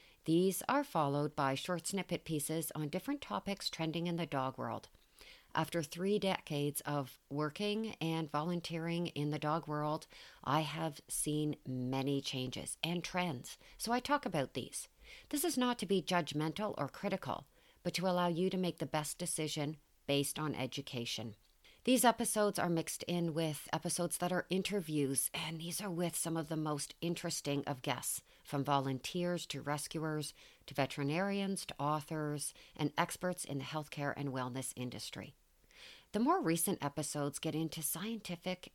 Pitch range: 145-175 Hz